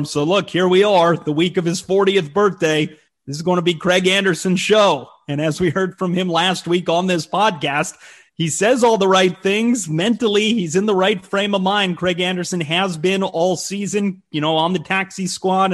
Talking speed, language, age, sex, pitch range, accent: 215 wpm, English, 30-49, male, 160-185 Hz, American